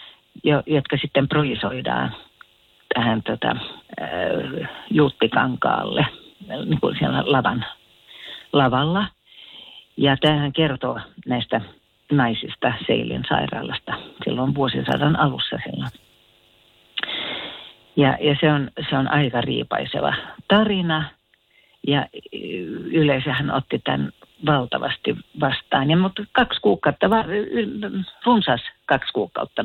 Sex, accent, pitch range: female, native, 135-185 Hz